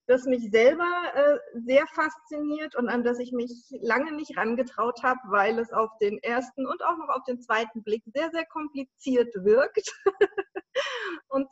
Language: German